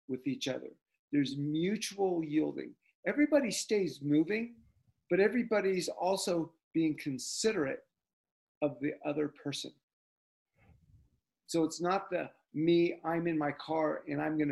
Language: English